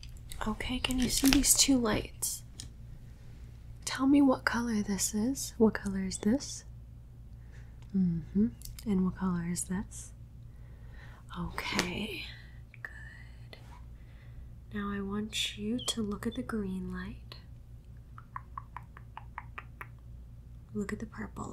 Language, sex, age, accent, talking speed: English, female, 20-39, American, 105 wpm